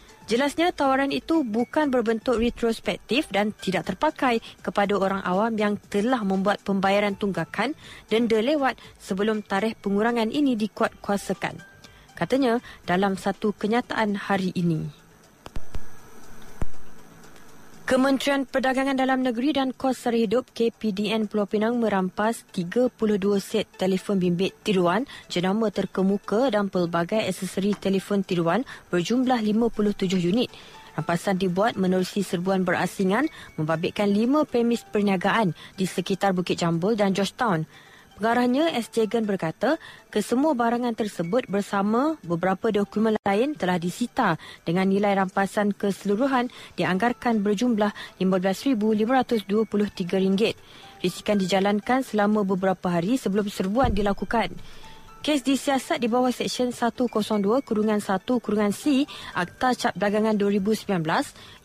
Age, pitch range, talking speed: 20-39, 195-240 Hz, 105 wpm